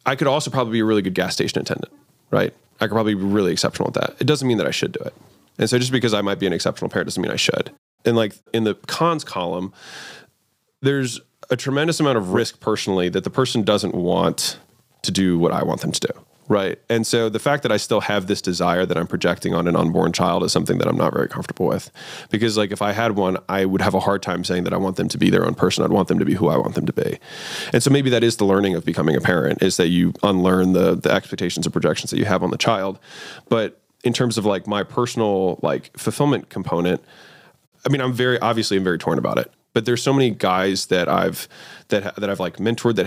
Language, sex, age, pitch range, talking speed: English, male, 20-39, 95-120 Hz, 260 wpm